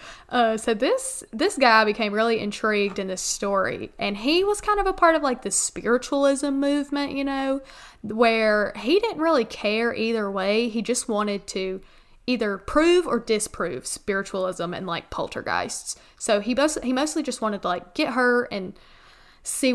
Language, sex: English, female